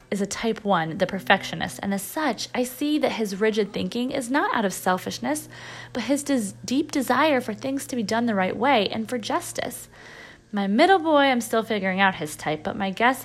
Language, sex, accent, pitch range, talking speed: English, female, American, 195-270 Hz, 215 wpm